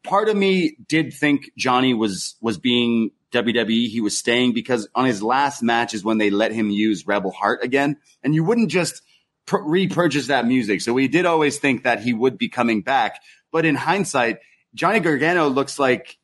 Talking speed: 190 wpm